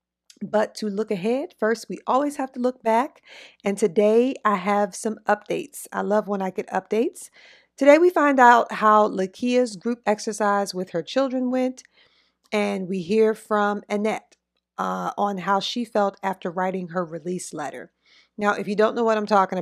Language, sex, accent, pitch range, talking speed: English, female, American, 185-225 Hz, 175 wpm